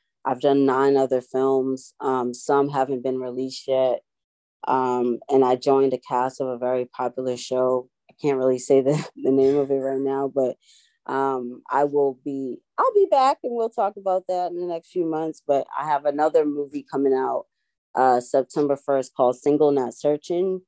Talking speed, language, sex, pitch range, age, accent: 190 wpm, English, female, 130-150 Hz, 20-39, American